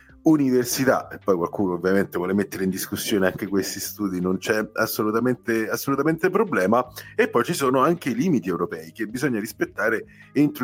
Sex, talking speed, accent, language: male, 165 wpm, native, Italian